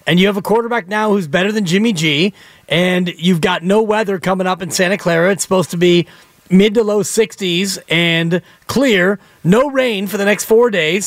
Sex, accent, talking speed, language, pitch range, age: male, American, 205 wpm, English, 175-210 Hz, 30-49